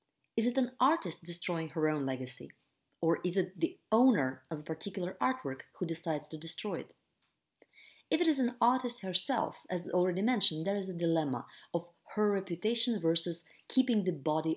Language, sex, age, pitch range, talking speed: English, female, 30-49, 160-230 Hz, 175 wpm